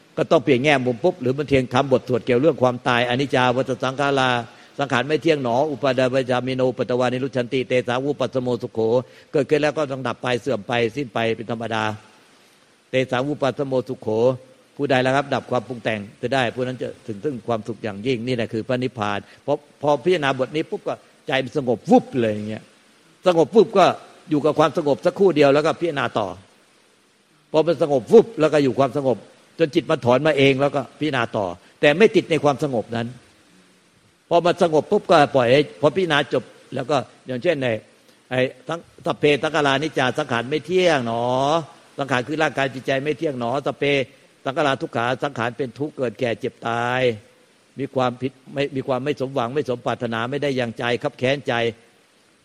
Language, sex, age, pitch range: Thai, male, 60-79, 120-145 Hz